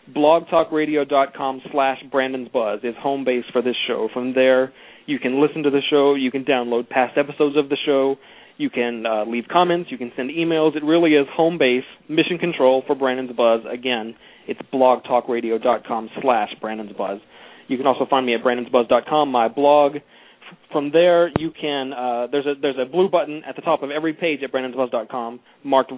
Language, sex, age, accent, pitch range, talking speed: English, male, 30-49, American, 130-155 Hz, 170 wpm